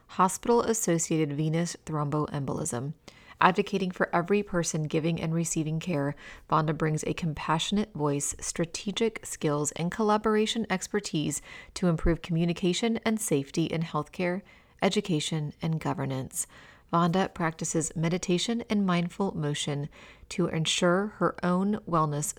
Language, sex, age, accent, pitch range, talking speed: English, female, 30-49, American, 160-190 Hz, 115 wpm